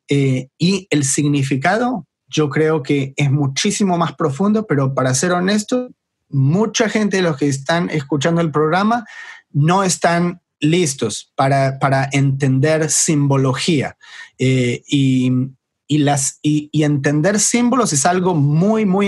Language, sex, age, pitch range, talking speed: English, male, 30-49, 140-175 Hz, 125 wpm